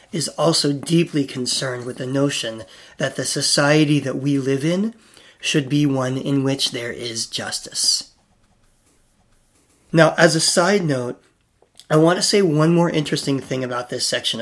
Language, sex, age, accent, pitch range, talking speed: English, male, 30-49, American, 130-160 Hz, 160 wpm